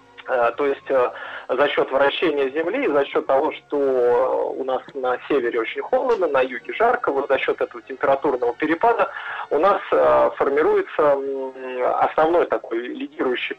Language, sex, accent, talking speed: Russian, male, native, 135 wpm